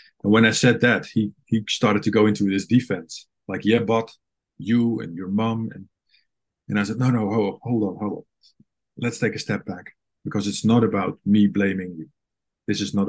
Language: English